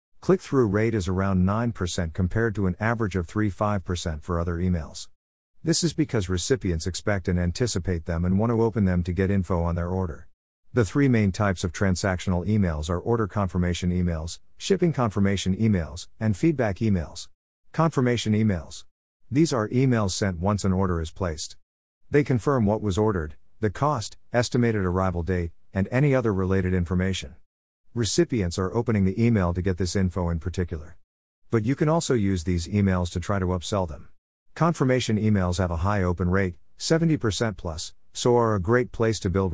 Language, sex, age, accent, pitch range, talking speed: English, male, 50-69, American, 90-115 Hz, 175 wpm